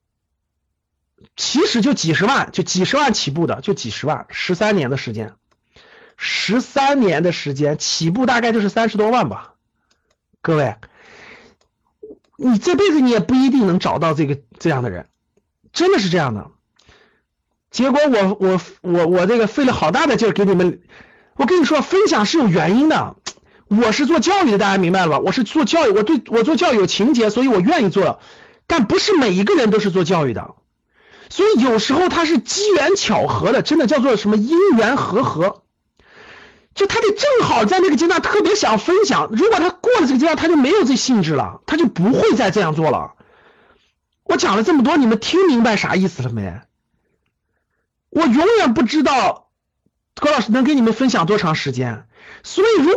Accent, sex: native, male